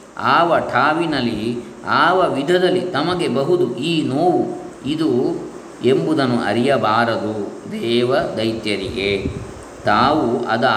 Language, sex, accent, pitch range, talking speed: Kannada, male, native, 115-165 Hz, 85 wpm